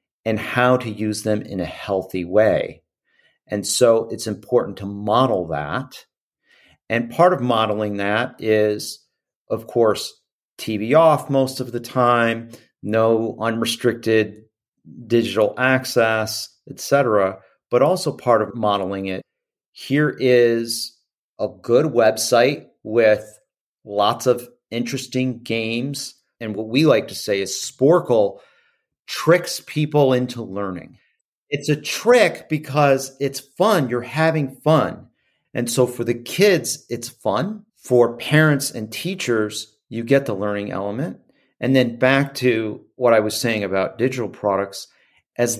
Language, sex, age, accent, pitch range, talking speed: English, male, 40-59, American, 110-130 Hz, 135 wpm